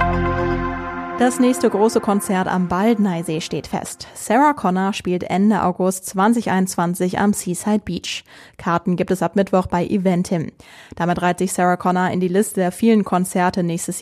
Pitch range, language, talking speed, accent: 175-200 Hz, German, 155 wpm, German